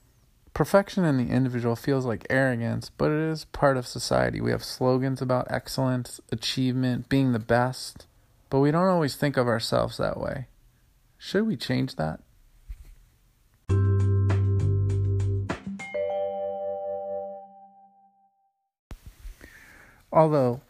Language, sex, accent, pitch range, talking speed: English, male, American, 115-140 Hz, 105 wpm